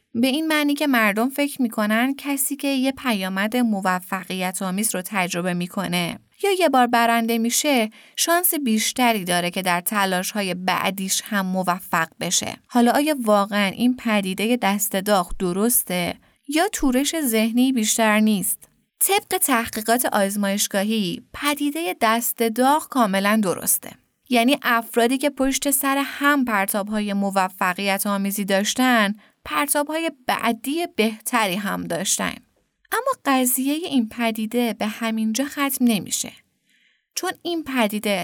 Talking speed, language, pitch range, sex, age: 125 wpm, Persian, 205-275 Hz, female, 20-39